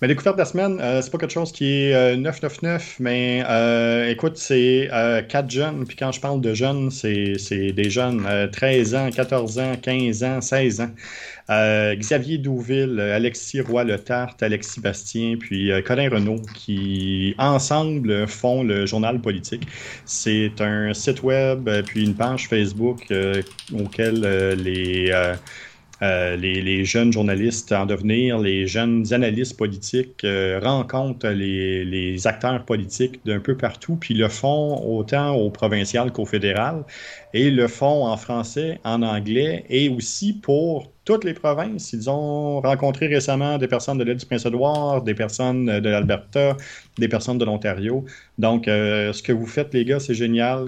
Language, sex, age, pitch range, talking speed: French, male, 30-49, 105-130 Hz, 165 wpm